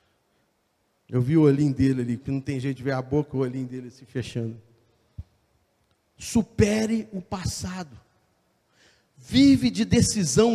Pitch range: 160-270 Hz